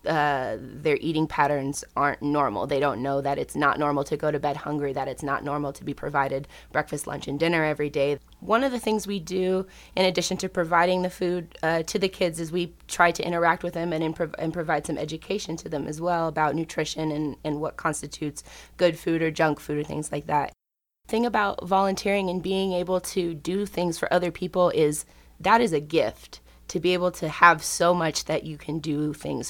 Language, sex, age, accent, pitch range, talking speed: English, female, 20-39, American, 150-180 Hz, 220 wpm